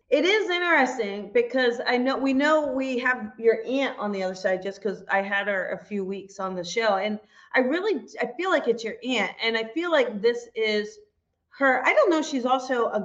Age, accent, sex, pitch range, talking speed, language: 30-49, American, female, 205-260 Hz, 225 wpm, English